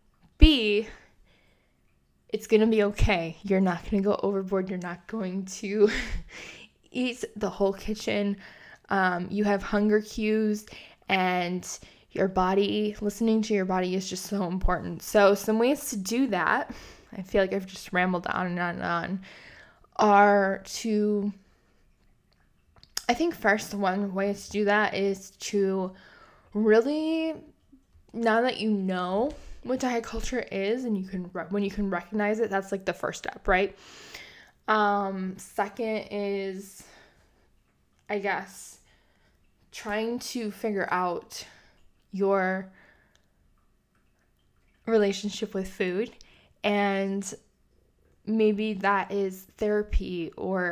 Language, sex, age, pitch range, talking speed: English, female, 10-29, 190-215 Hz, 125 wpm